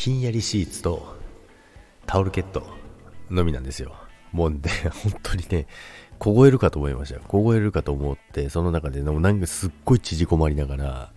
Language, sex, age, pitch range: Japanese, male, 40-59, 70-95 Hz